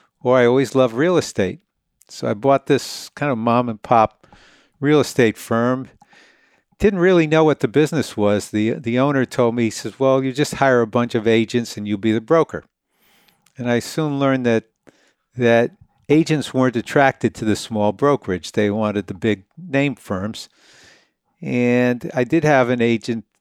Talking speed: 180 wpm